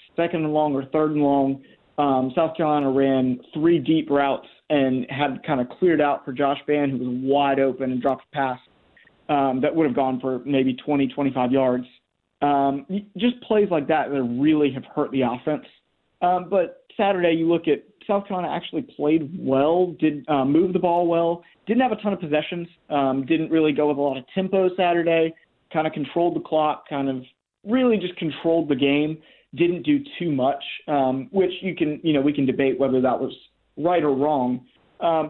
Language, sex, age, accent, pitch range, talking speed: English, male, 30-49, American, 130-165 Hz, 200 wpm